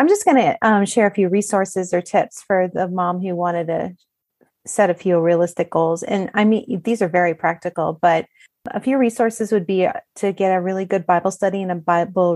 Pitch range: 175-215 Hz